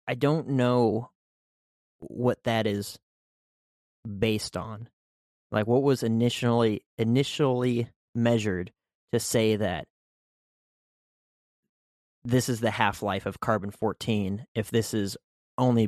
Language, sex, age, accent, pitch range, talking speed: English, male, 30-49, American, 105-120 Hz, 110 wpm